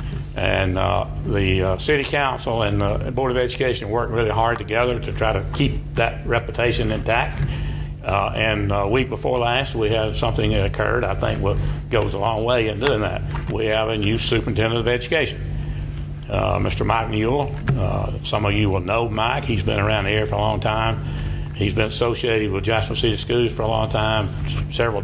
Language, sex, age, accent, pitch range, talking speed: English, male, 60-79, American, 105-120 Hz, 200 wpm